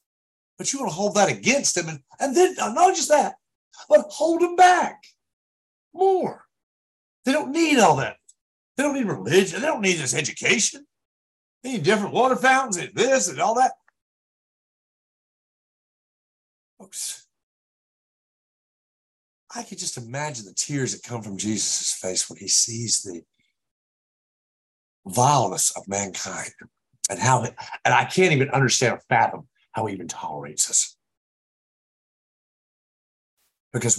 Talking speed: 140 wpm